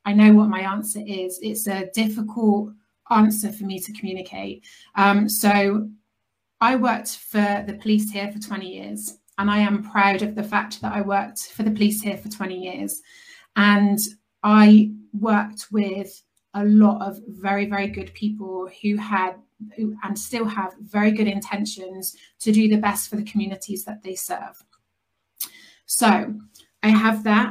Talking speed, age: 165 wpm, 30-49